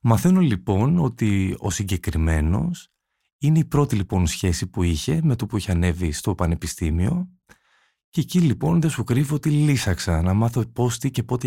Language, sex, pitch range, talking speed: Greek, male, 90-130 Hz, 175 wpm